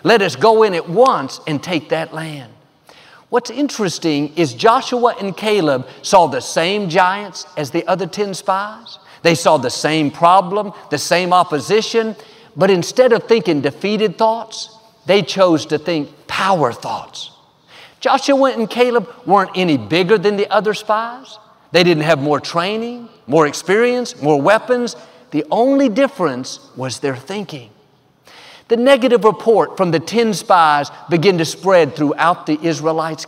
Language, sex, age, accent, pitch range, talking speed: English, male, 50-69, American, 160-220 Hz, 150 wpm